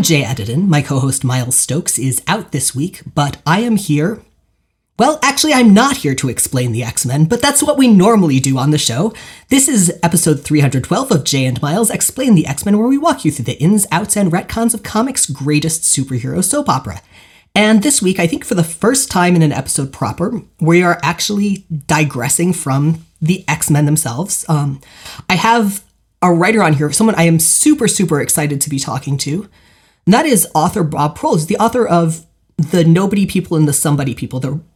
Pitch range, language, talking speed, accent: 145-195 Hz, English, 195 wpm, American